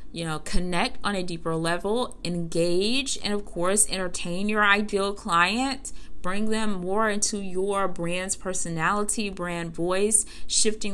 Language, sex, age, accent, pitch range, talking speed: English, female, 20-39, American, 175-210 Hz, 135 wpm